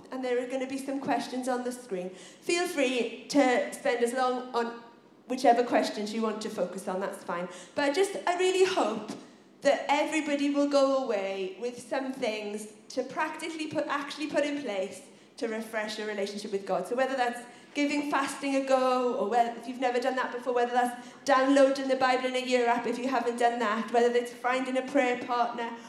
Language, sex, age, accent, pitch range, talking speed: English, female, 40-59, British, 210-275 Hz, 205 wpm